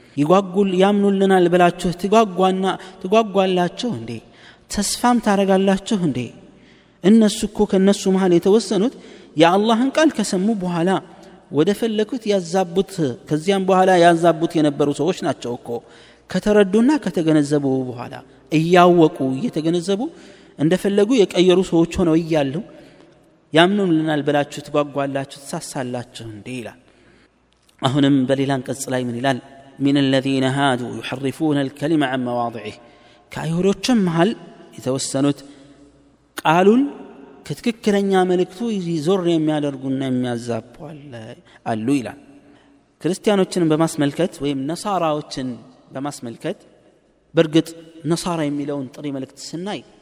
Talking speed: 95 wpm